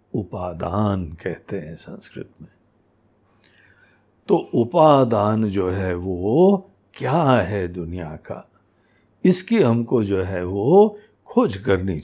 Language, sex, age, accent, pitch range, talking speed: Hindi, male, 60-79, native, 100-140 Hz, 105 wpm